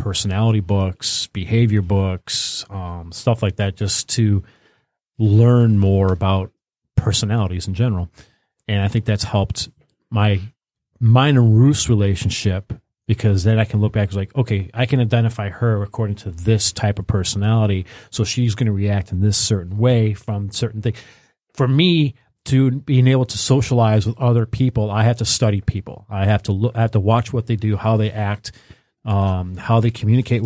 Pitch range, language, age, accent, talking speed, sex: 100-115 Hz, English, 40-59, American, 175 wpm, male